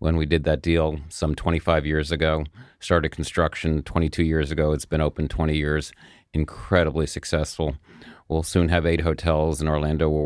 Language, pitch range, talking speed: English, 80-95 Hz, 170 wpm